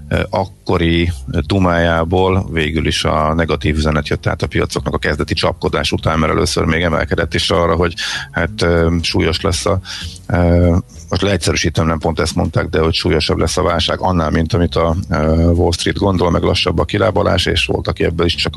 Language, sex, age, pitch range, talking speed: Hungarian, male, 50-69, 80-95 Hz, 180 wpm